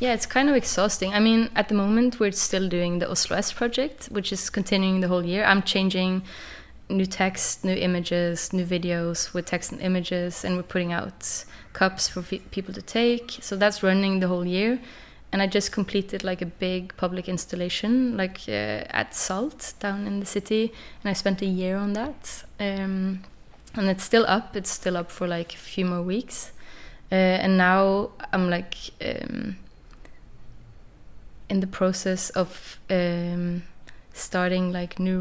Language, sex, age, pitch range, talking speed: English, female, 20-39, 180-205 Hz, 175 wpm